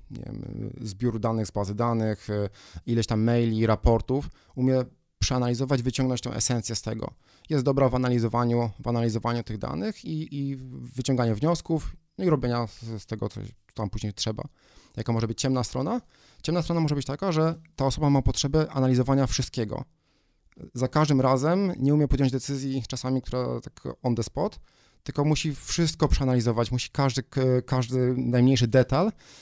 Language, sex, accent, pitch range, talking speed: Polish, male, native, 115-140 Hz, 155 wpm